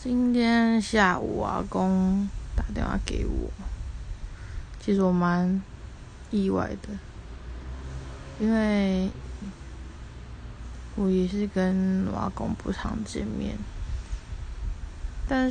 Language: Chinese